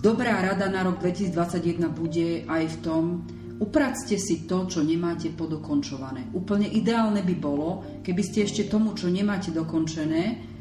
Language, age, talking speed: Slovak, 40-59, 145 wpm